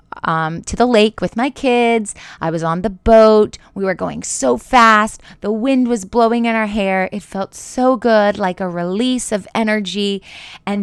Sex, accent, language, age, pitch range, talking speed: female, American, English, 20-39, 180-225 Hz, 190 wpm